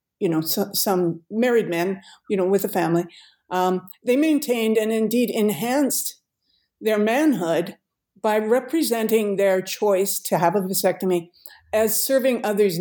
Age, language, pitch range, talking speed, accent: 50-69, English, 180-215 Hz, 135 wpm, American